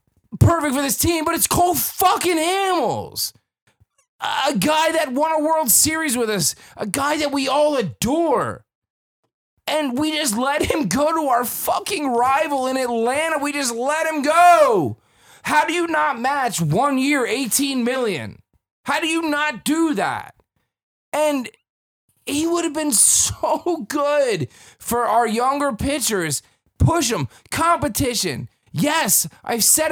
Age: 30-49